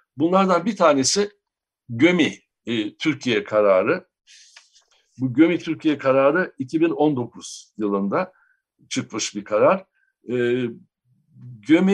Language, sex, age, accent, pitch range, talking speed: Turkish, male, 60-79, native, 130-185 Hz, 90 wpm